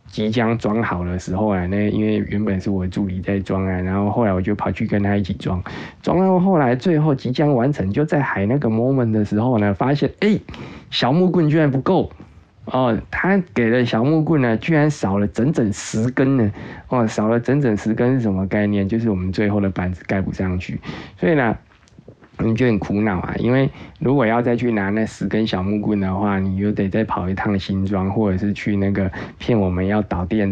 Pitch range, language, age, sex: 95-115 Hz, Chinese, 20-39, male